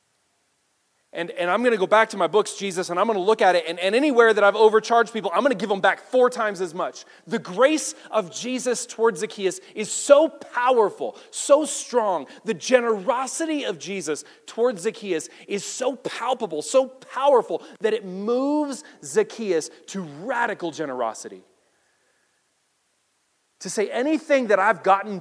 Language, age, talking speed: English, 30-49, 165 wpm